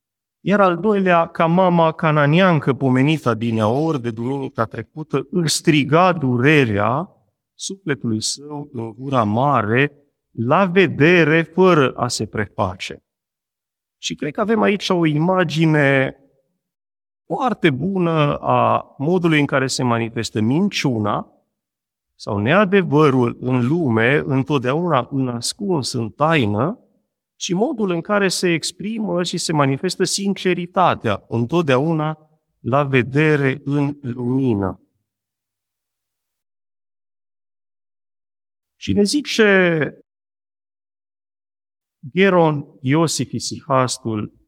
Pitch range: 115-165 Hz